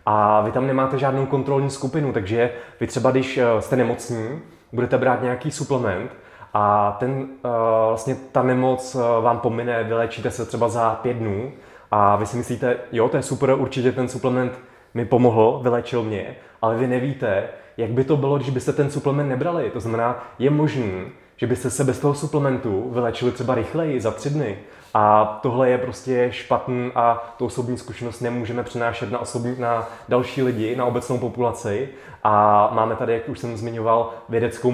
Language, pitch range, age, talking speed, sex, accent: Czech, 115-130 Hz, 20-39, 170 wpm, male, native